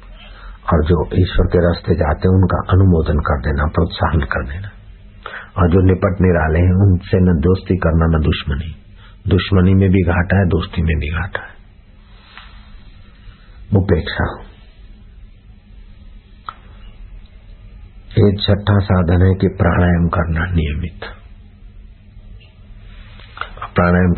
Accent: native